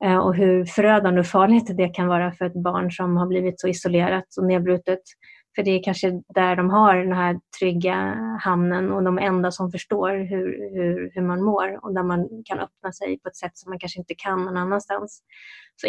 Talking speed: 210 wpm